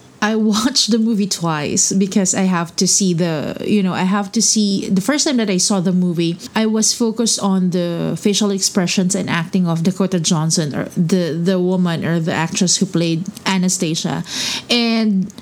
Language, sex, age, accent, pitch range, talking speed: English, female, 20-39, Filipino, 180-215 Hz, 185 wpm